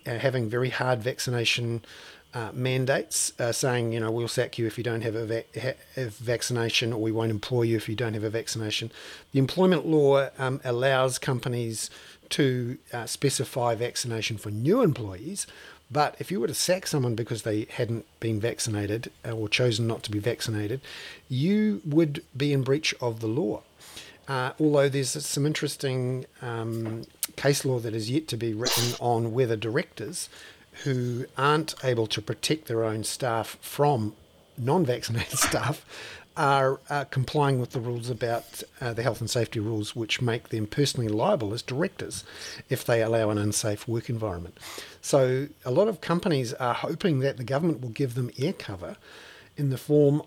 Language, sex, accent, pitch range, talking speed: English, male, Australian, 115-140 Hz, 170 wpm